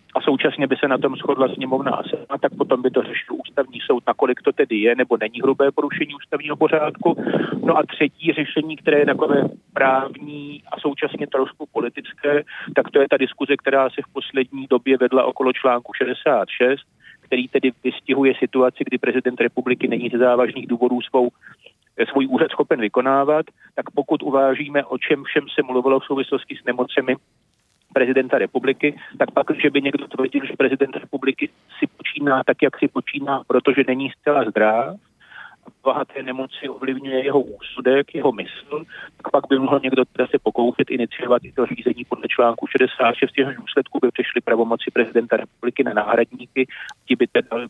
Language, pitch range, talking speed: Czech, 125-140 Hz, 170 wpm